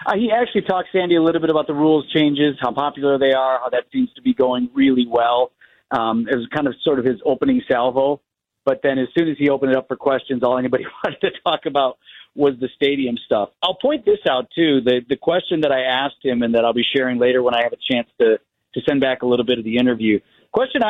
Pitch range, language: 135-185 Hz, English